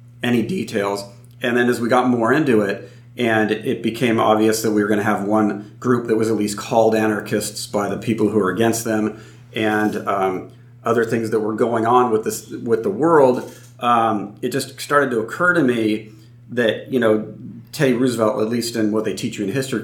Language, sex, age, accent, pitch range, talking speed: English, male, 40-59, American, 110-125 Hz, 210 wpm